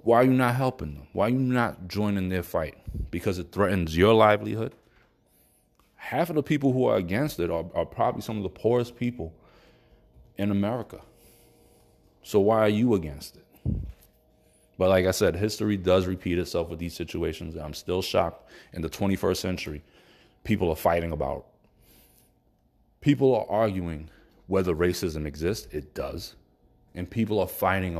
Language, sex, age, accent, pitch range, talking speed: English, male, 30-49, American, 85-115 Hz, 165 wpm